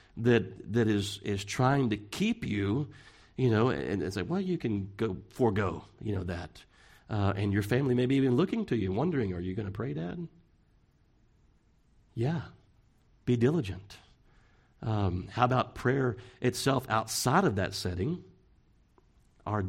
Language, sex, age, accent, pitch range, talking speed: English, male, 40-59, American, 100-120 Hz, 155 wpm